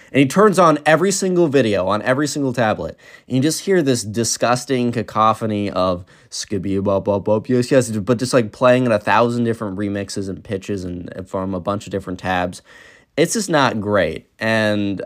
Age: 20-39